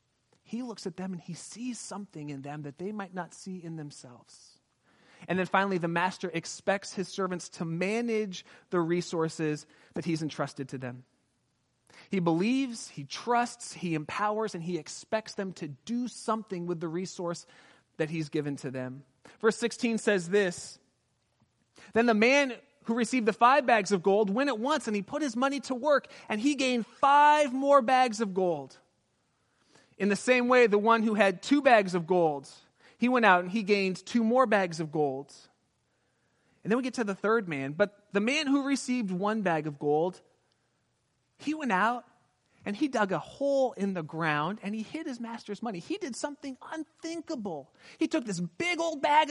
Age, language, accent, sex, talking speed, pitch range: 30-49, English, American, male, 185 wpm, 170-240 Hz